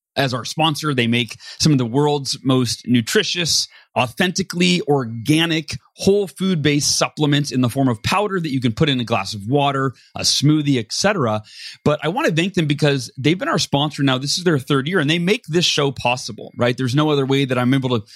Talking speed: 220 wpm